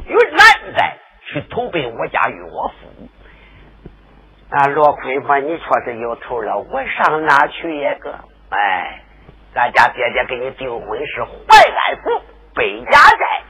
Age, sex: 50-69, male